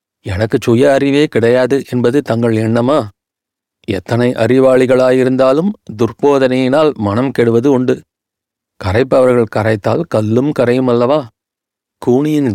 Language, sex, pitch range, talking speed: Tamil, male, 115-135 Hz, 90 wpm